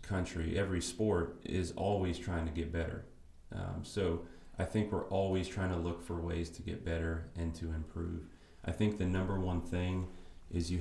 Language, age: Czech, 30-49